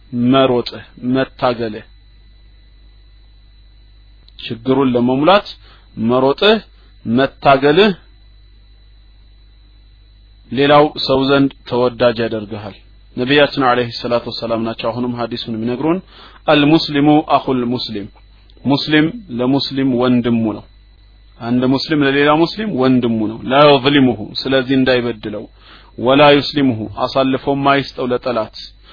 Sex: male